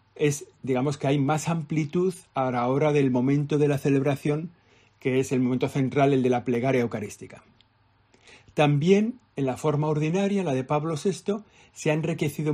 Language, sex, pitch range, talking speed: Spanish, male, 125-155 Hz, 170 wpm